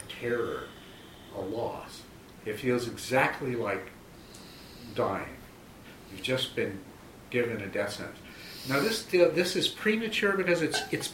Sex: male